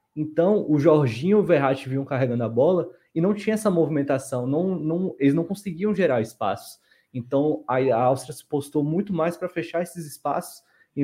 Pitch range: 125-165 Hz